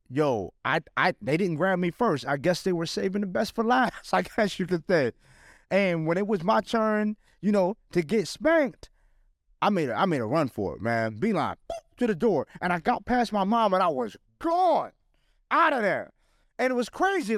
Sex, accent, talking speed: male, American, 225 wpm